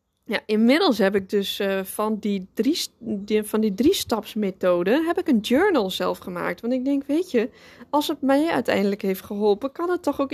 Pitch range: 205-270 Hz